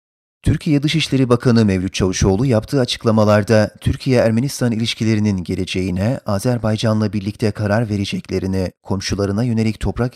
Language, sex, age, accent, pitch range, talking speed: Turkish, male, 40-59, native, 105-120 Hz, 100 wpm